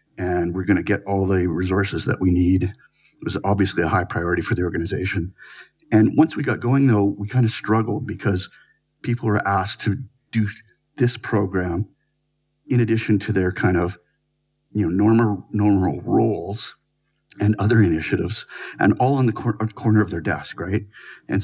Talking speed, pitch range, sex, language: 175 wpm, 95-115 Hz, male, English